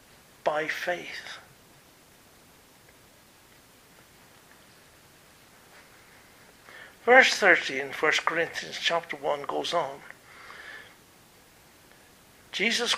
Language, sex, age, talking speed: English, male, 60-79, 55 wpm